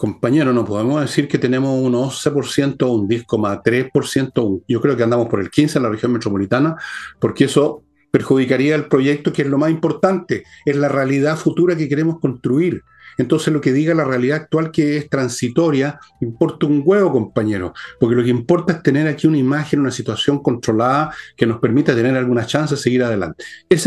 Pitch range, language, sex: 115-145 Hz, Spanish, male